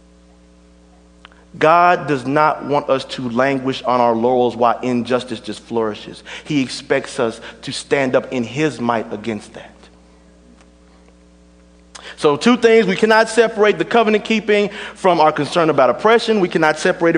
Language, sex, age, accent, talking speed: English, male, 30-49, American, 145 wpm